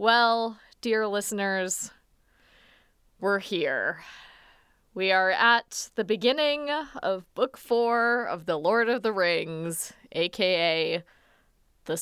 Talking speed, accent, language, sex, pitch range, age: 105 wpm, American, English, female, 195-250 Hz, 20-39